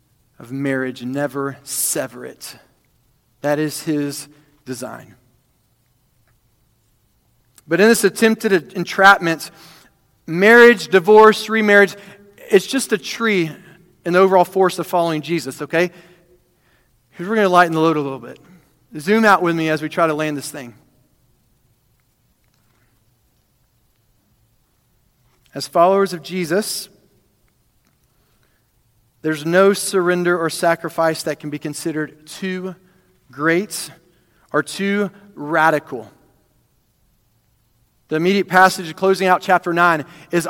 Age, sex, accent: 40-59, male, American